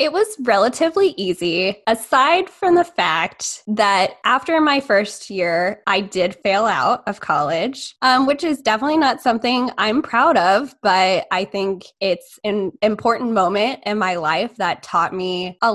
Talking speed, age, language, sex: 160 wpm, 10-29, English, female